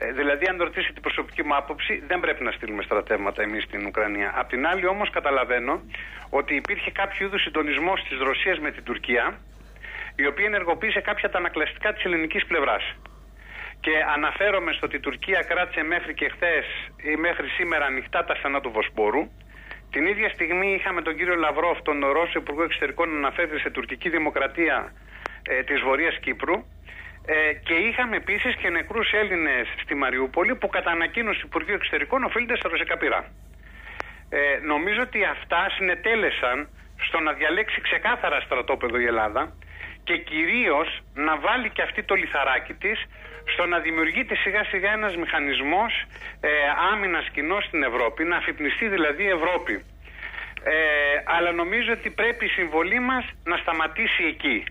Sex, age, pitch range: male, 30-49, 150-200 Hz